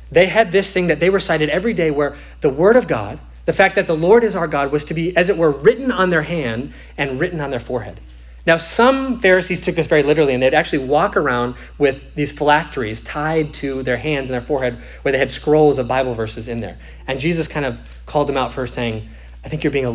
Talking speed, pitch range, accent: 245 wpm, 100-160 Hz, American